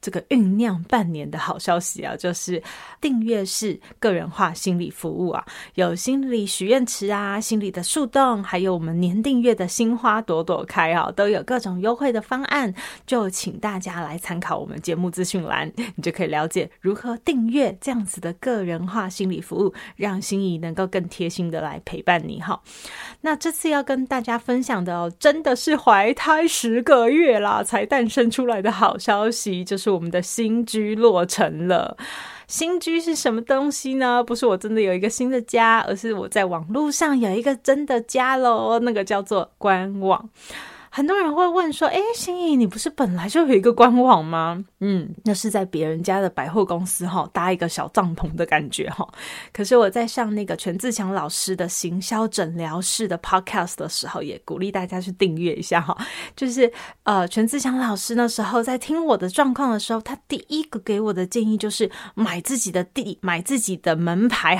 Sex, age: female, 30-49